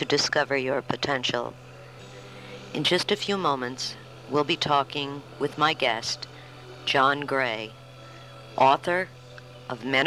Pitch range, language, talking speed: 125-175 Hz, English, 120 wpm